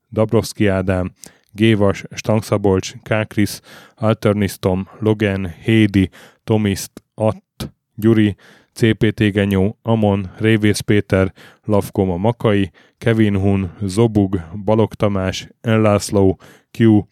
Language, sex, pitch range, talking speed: Hungarian, male, 100-110 Hz, 90 wpm